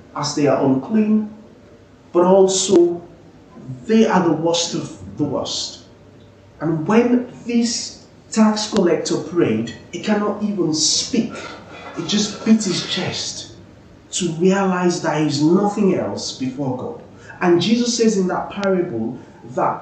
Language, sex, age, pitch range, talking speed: English, male, 30-49, 125-190 Hz, 130 wpm